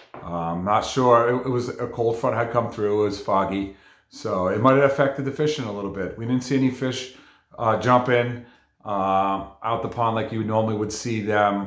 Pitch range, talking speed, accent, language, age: 100-130 Hz, 225 wpm, American, English, 40-59